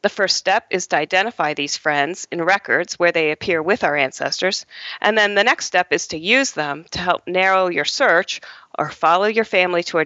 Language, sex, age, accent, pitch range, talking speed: English, female, 40-59, American, 165-220 Hz, 215 wpm